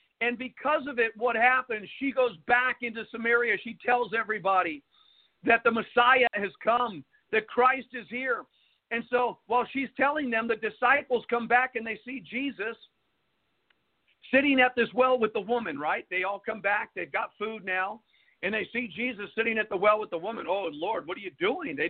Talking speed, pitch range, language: 195 wpm, 215-260 Hz, English